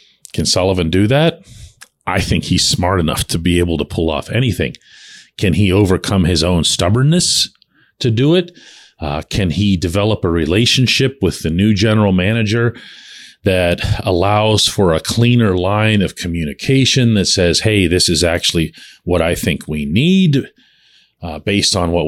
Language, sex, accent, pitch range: English, male, American, 85-120 Hz